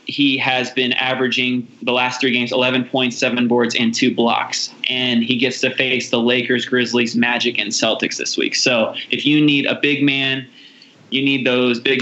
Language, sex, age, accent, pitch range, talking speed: English, male, 20-39, American, 120-135 Hz, 185 wpm